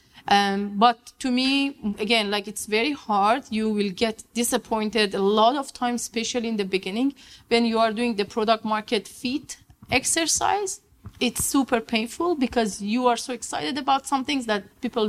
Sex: female